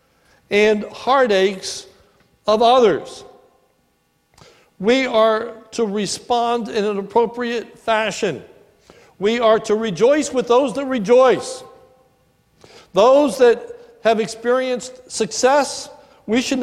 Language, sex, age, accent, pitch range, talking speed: English, male, 60-79, American, 220-265 Hz, 95 wpm